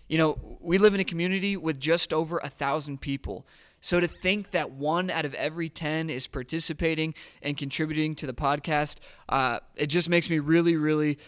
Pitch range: 140-170 Hz